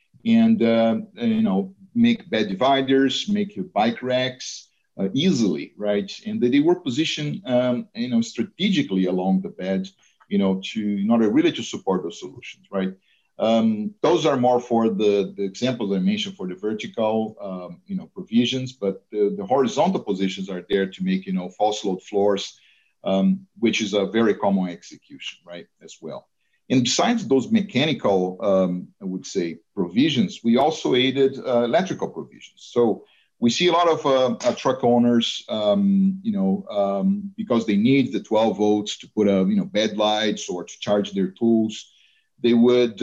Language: English